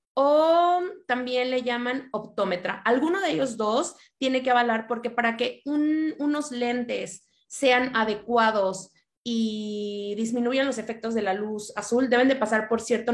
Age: 20-39